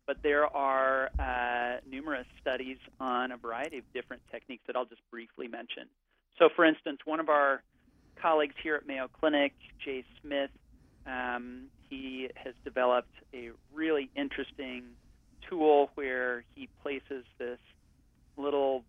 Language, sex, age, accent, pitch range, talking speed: English, male, 40-59, American, 125-145 Hz, 135 wpm